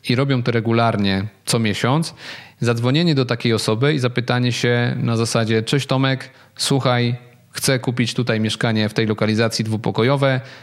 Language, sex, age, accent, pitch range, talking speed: Polish, male, 40-59, native, 110-130 Hz, 145 wpm